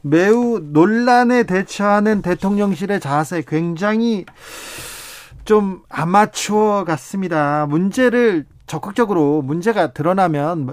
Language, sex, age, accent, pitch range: Korean, male, 40-59, native, 145-195 Hz